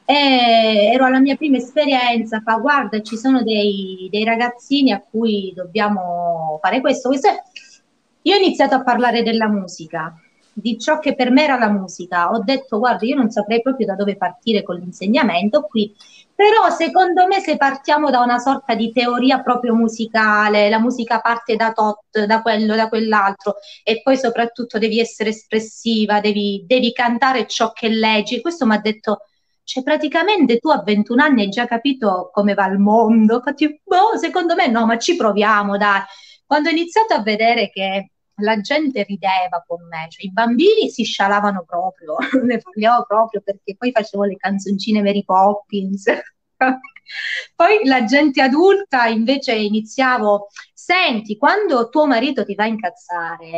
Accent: native